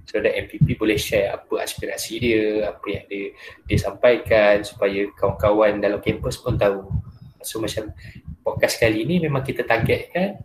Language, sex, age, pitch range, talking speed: Malay, male, 20-39, 105-120 Hz, 155 wpm